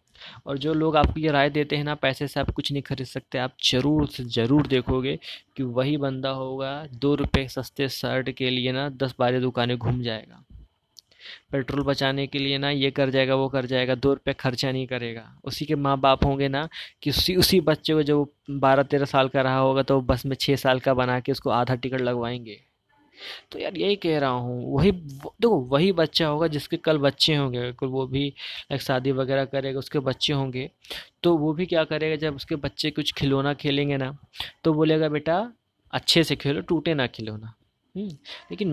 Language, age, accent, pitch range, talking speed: Hindi, 20-39, native, 130-155 Hz, 200 wpm